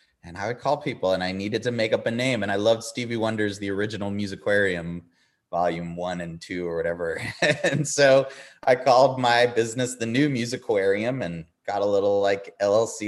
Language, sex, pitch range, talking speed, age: English, male, 85-110 Hz, 200 wpm, 20-39